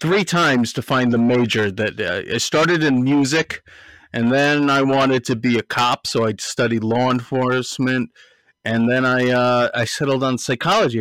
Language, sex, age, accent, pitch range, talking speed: English, male, 30-49, American, 110-135 Hz, 180 wpm